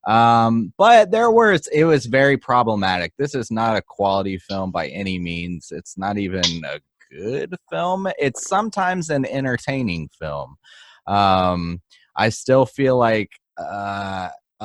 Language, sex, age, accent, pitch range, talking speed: English, male, 30-49, American, 90-125 Hz, 140 wpm